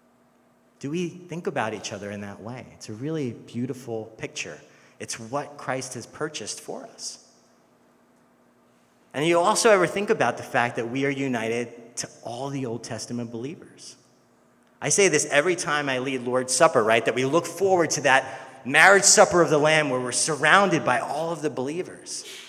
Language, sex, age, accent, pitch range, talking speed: English, male, 30-49, American, 125-175 Hz, 180 wpm